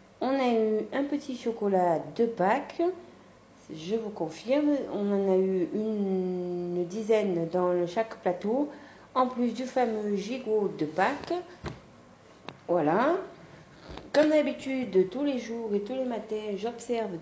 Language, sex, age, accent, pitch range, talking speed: French, female, 40-59, French, 195-255 Hz, 130 wpm